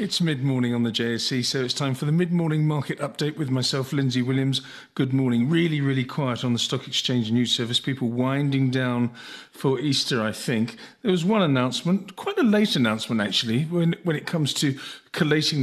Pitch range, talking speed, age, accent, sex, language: 125-160 Hz, 190 wpm, 40-59, British, male, English